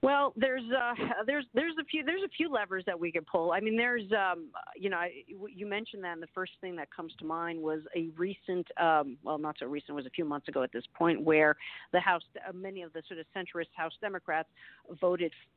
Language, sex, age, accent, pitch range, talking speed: English, female, 50-69, American, 160-195 Hz, 245 wpm